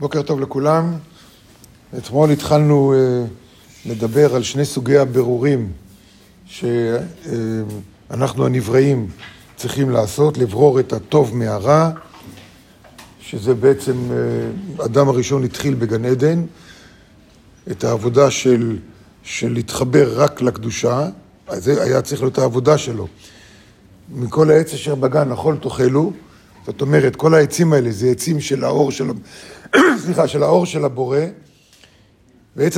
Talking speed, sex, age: 115 wpm, male, 50-69